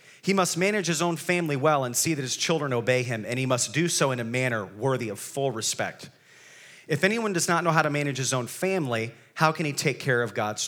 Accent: American